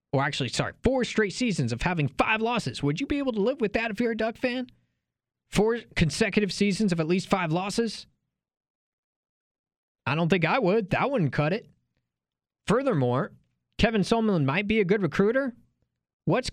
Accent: American